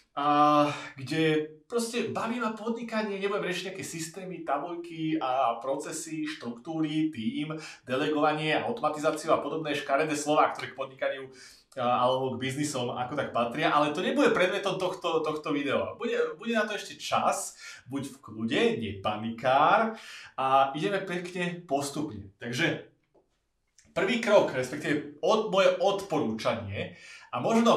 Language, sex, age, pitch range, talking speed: Slovak, male, 30-49, 125-175 Hz, 135 wpm